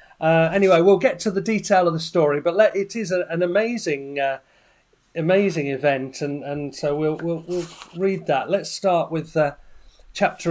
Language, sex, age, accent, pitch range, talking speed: English, male, 40-59, British, 155-205 Hz, 170 wpm